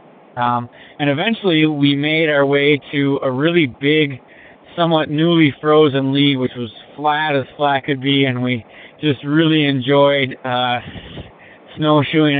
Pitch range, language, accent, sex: 130-155 Hz, English, American, male